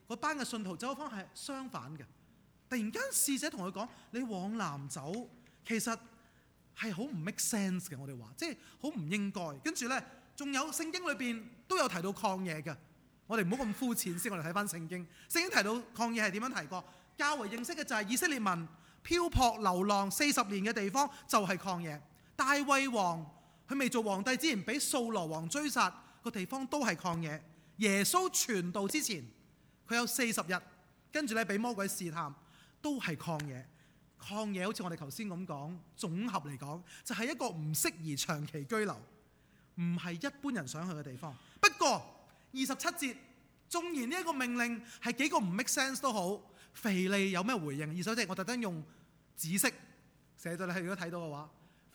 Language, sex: Chinese, male